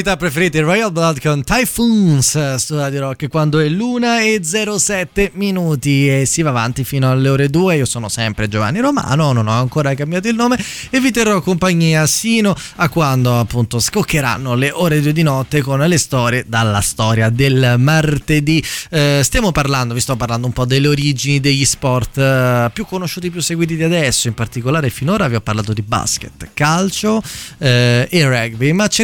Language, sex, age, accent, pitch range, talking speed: Italian, male, 20-39, native, 125-175 Hz, 180 wpm